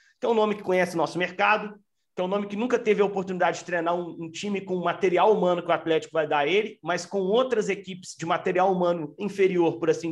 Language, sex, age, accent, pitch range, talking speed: Portuguese, male, 40-59, Brazilian, 155-195 Hz, 260 wpm